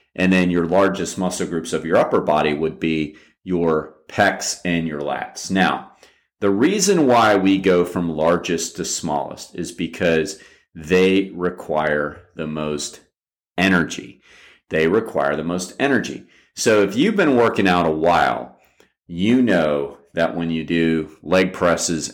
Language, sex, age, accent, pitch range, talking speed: English, male, 40-59, American, 80-100 Hz, 150 wpm